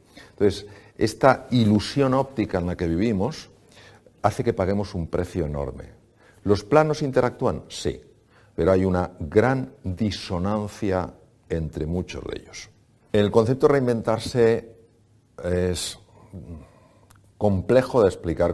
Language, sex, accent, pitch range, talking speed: Spanish, male, Spanish, 85-115 Hz, 115 wpm